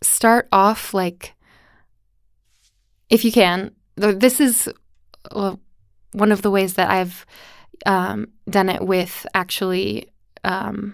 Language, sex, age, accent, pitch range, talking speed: Finnish, female, 20-39, American, 180-210 Hz, 110 wpm